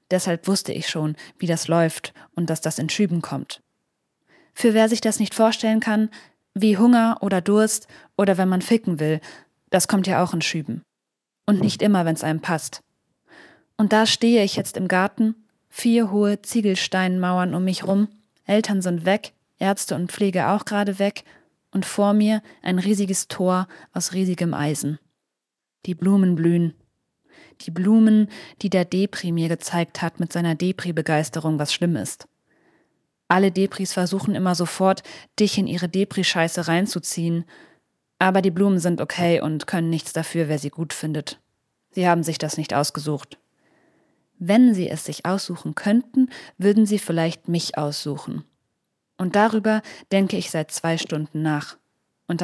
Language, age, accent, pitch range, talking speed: German, 20-39, German, 165-205 Hz, 160 wpm